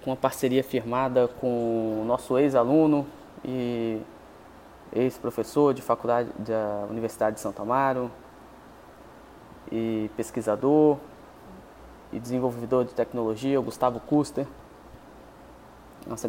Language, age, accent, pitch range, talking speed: English, 20-39, Brazilian, 115-130 Hz, 100 wpm